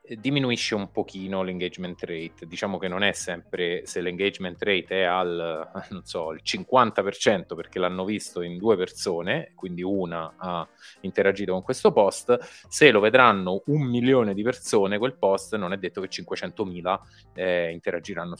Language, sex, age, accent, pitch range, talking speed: Italian, male, 30-49, native, 90-110 Hz, 155 wpm